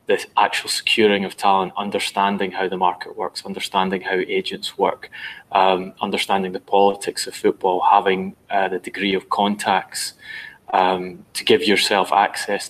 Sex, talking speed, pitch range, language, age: male, 145 wpm, 95-110 Hz, English, 20-39